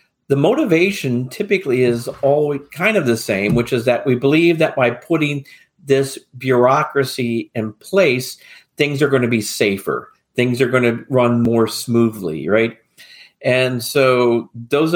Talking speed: 155 wpm